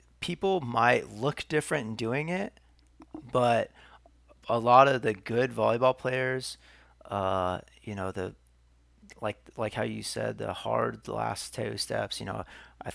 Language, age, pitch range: English, 30-49, 100-120 Hz